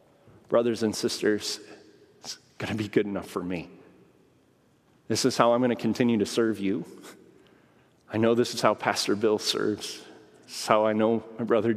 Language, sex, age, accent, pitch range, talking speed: English, male, 30-49, American, 115-150 Hz, 185 wpm